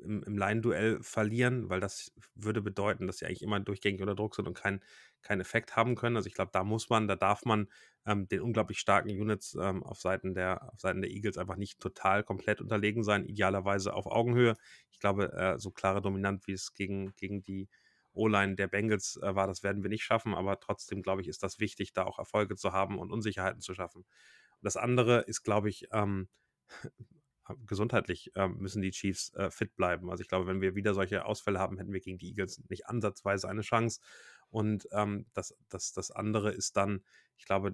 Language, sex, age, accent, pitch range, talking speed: German, male, 30-49, German, 95-105 Hz, 210 wpm